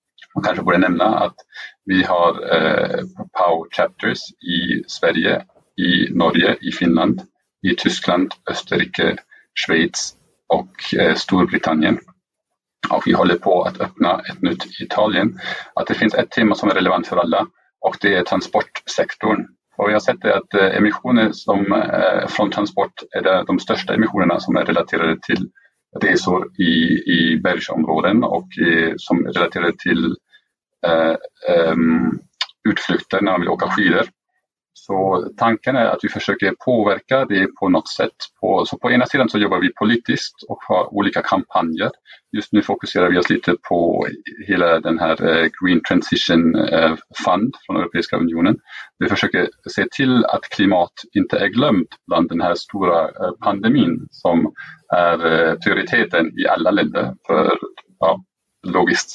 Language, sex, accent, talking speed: English, male, Norwegian, 140 wpm